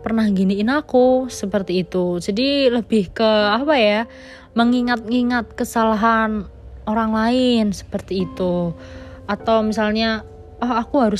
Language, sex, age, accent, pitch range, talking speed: Indonesian, female, 20-39, native, 195-230 Hz, 115 wpm